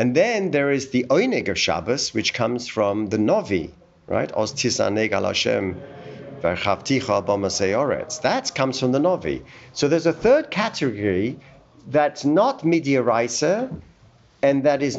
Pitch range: 110-145 Hz